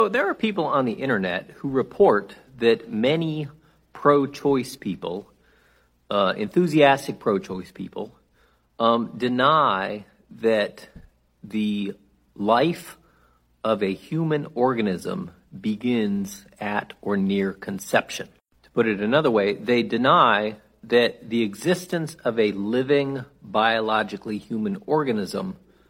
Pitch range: 110-170 Hz